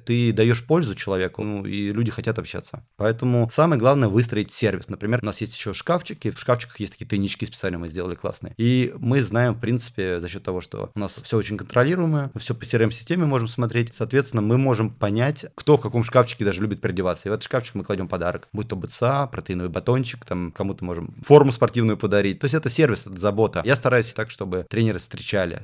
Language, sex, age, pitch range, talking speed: Russian, male, 30-49, 95-120 Hz, 210 wpm